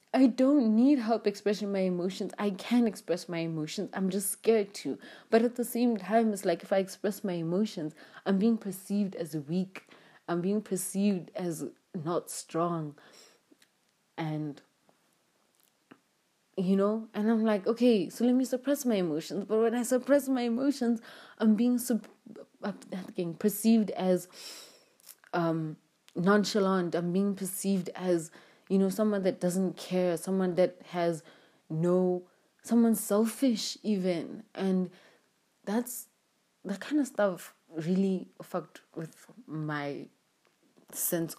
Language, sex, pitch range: English, female, 165-220 Hz